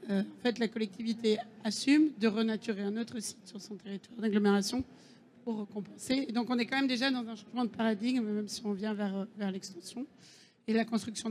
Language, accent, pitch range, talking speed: French, French, 210-245 Hz, 200 wpm